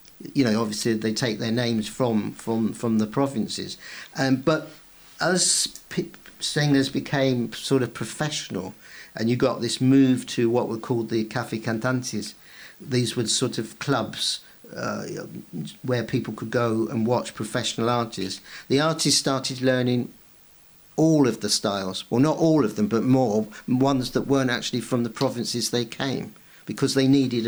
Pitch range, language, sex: 110-130 Hz, English, male